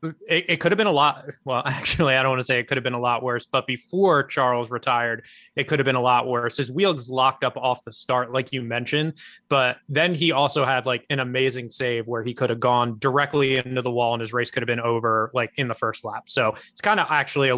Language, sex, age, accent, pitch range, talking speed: English, male, 20-39, American, 120-140 Hz, 265 wpm